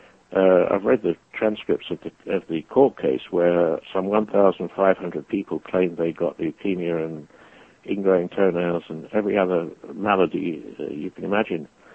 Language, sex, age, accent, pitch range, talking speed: English, male, 60-79, British, 85-95 Hz, 145 wpm